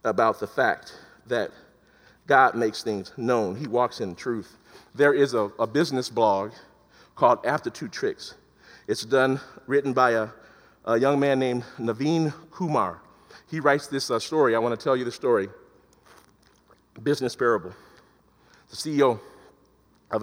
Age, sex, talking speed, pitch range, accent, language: 40-59, male, 150 wpm, 120-160 Hz, American, English